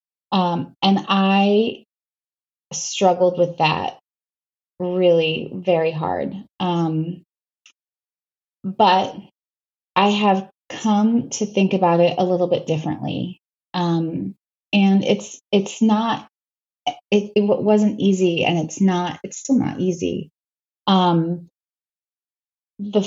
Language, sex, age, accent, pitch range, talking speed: English, female, 20-39, American, 165-195 Hz, 105 wpm